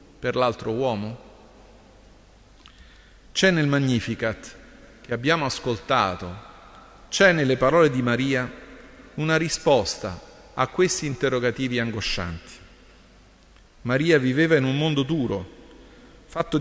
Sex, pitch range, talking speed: male, 115-150 Hz, 100 wpm